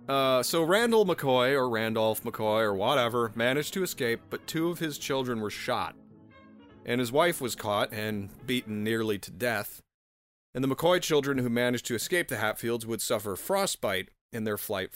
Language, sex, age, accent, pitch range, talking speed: English, male, 30-49, American, 110-145 Hz, 180 wpm